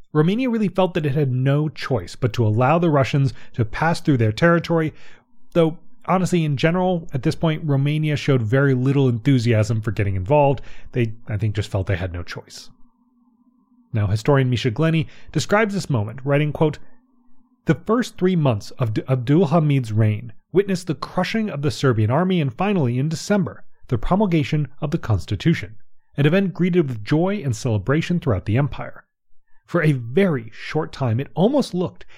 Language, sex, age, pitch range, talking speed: English, male, 30-49, 120-170 Hz, 175 wpm